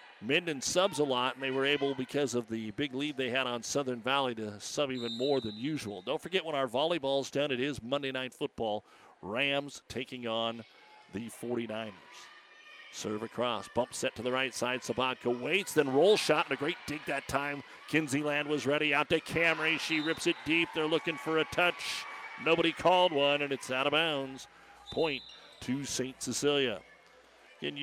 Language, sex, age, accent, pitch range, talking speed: English, male, 50-69, American, 120-145 Hz, 190 wpm